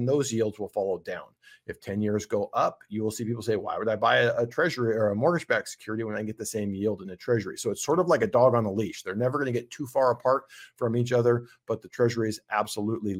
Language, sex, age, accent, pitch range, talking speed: English, male, 40-59, American, 110-130 Hz, 275 wpm